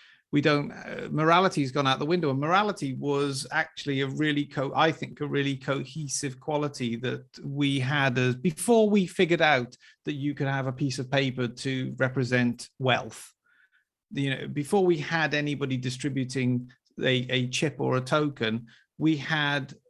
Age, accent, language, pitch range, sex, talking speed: 40-59, British, English, 130-155 Hz, male, 165 wpm